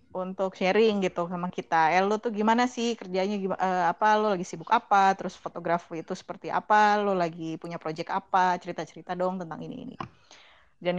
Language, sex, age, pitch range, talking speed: Indonesian, female, 20-39, 175-215 Hz, 170 wpm